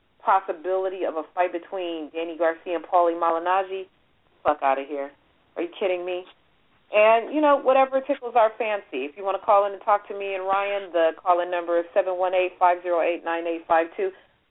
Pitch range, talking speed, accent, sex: 160-200 Hz, 175 wpm, American, female